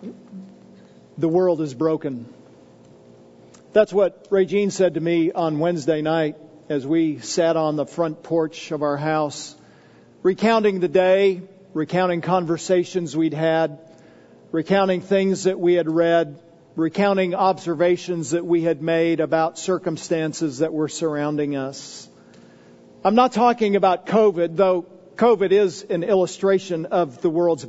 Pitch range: 160-195 Hz